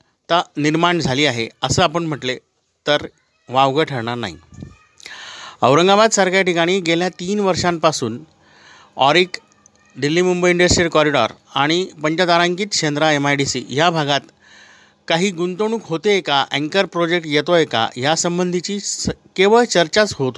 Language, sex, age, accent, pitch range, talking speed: Marathi, male, 50-69, native, 150-190 Hz, 120 wpm